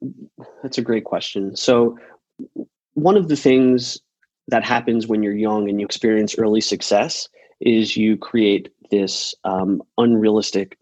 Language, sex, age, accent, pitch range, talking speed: English, male, 30-49, American, 110-125 Hz, 140 wpm